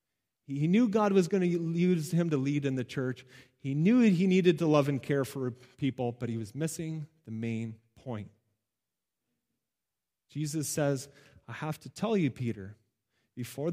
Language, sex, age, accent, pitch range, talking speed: English, male, 30-49, American, 125-160 Hz, 170 wpm